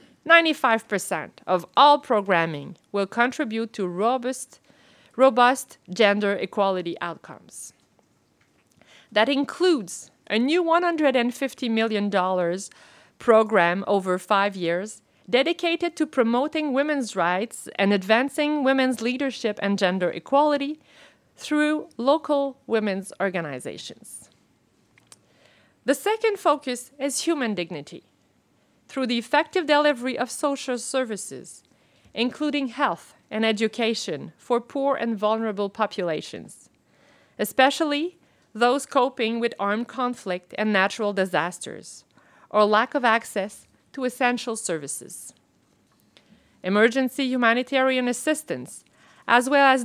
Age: 40-59